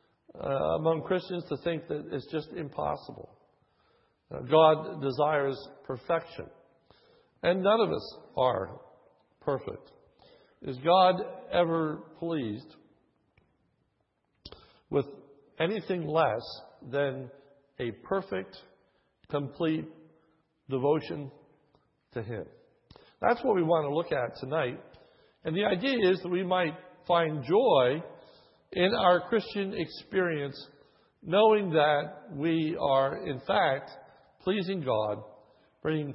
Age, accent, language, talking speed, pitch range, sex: 60-79, American, English, 105 wpm, 145-185 Hz, male